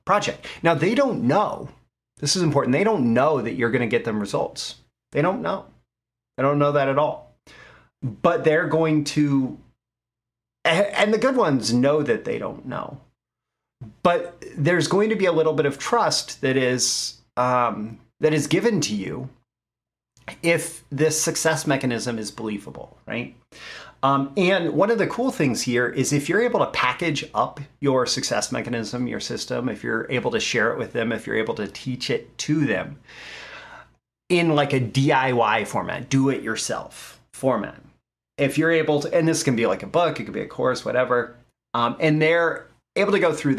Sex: male